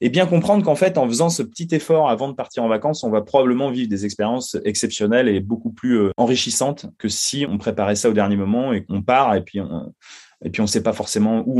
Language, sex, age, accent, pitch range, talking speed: French, male, 20-39, French, 105-155 Hz, 235 wpm